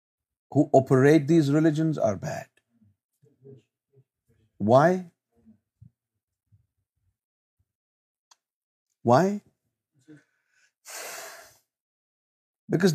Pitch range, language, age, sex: 110-160 Hz, Urdu, 50-69, male